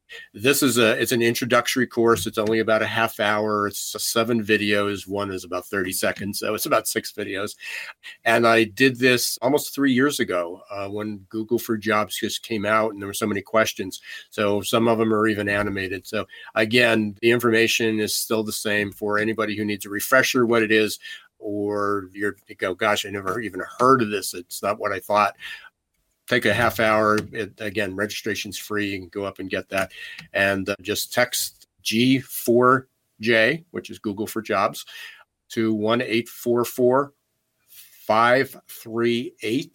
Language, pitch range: English, 105-120 Hz